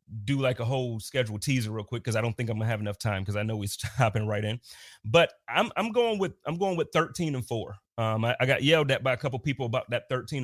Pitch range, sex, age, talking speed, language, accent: 110-140 Hz, male, 30-49, 275 wpm, English, American